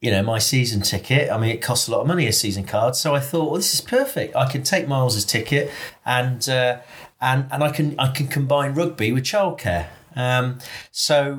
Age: 30-49